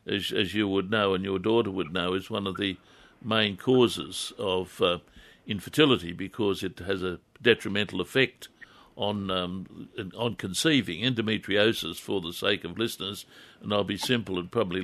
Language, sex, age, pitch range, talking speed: English, male, 60-79, 100-120 Hz, 165 wpm